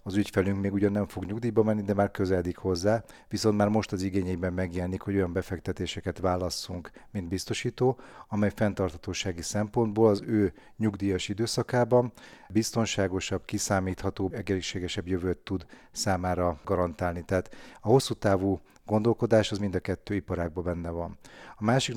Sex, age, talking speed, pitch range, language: male, 40-59, 140 wpm, 95-105 Hz, Hungarian